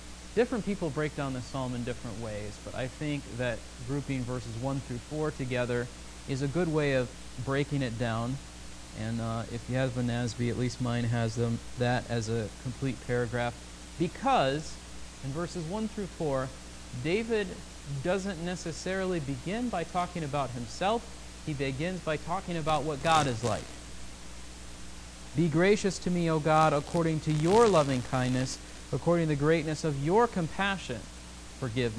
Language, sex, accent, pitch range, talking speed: English, male, American, 120-165 Hz, 160 wpm